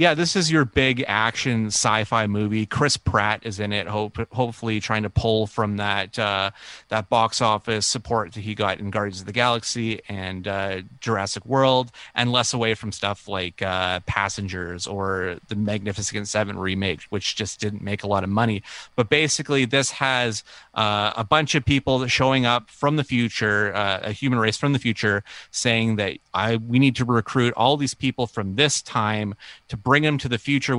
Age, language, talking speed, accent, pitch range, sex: 30-49, English, 195 wpm, American, 100-125 Hz, male